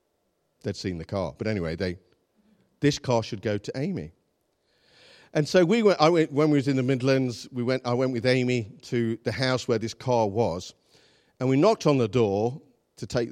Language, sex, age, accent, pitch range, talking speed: English, male, 50-69, British, 110-150 Hz, 205 wpm